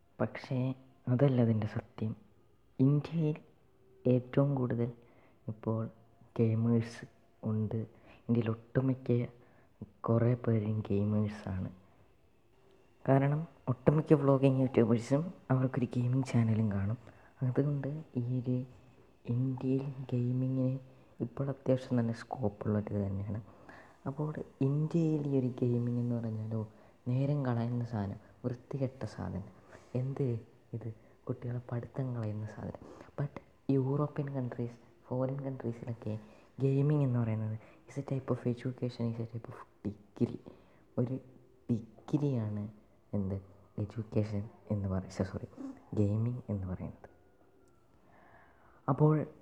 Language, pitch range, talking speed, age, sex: Malayalam, 110-130 Hz, 100 wpm, 20-39, female